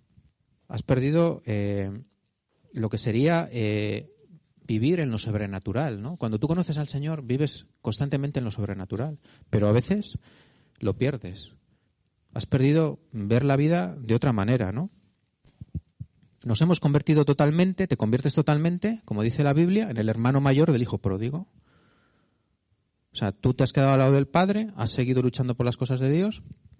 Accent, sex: Spanish, male